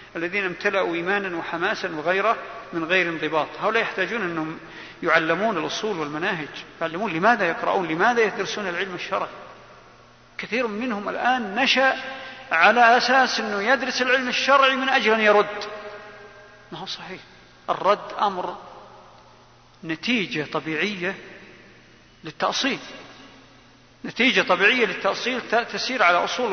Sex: male